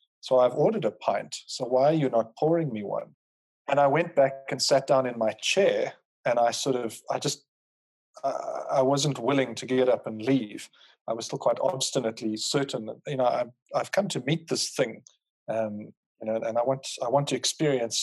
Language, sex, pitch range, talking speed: English, male, 115-145 Hz, 215 wpm